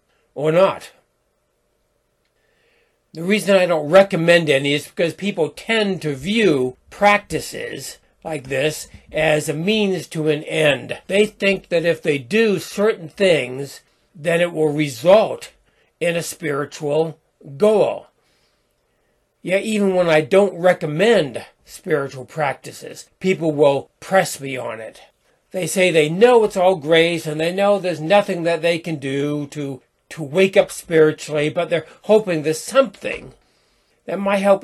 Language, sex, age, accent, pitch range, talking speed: English, male, 60-79, American, 155-195 Hz, 140 wpm